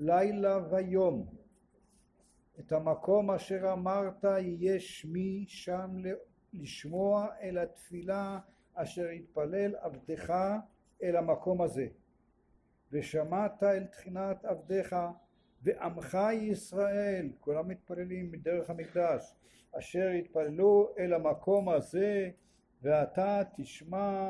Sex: male